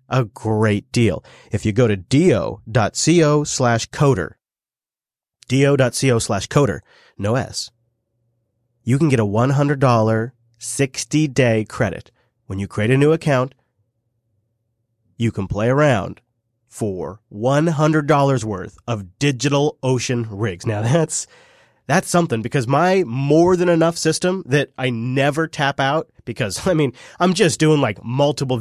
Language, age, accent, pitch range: English, 30-49, American, 115-145 Hz